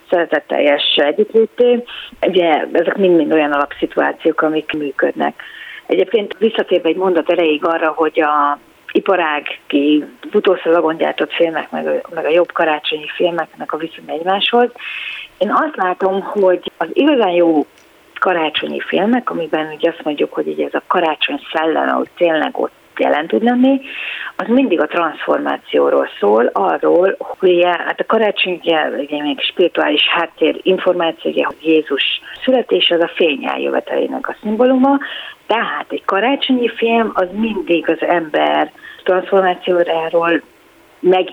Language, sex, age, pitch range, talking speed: Hungarian, female, 40-59, 165-250 Hz, 120 wpm